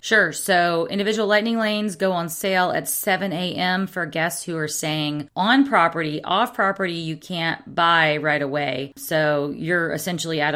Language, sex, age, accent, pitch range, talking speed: English, female, 30-49, American, 150-180 Hz, 165 wpm